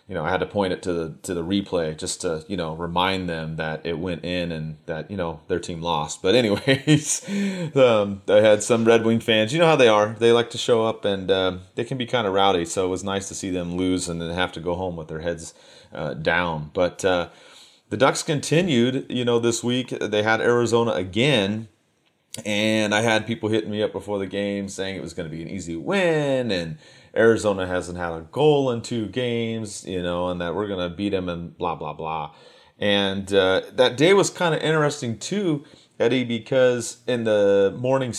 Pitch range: 90-120 Hz